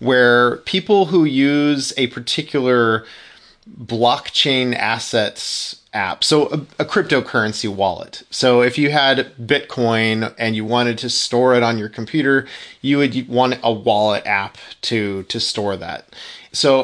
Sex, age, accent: male, 30-49, American